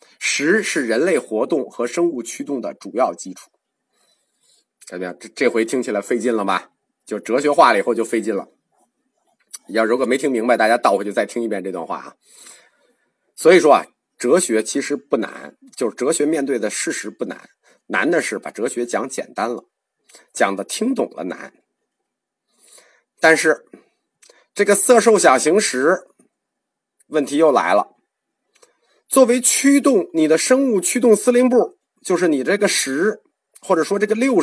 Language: Chinese